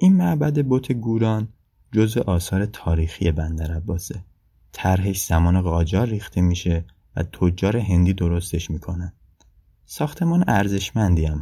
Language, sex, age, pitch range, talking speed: Persian, male, 20-39, 85-100 Hz, 110 wpm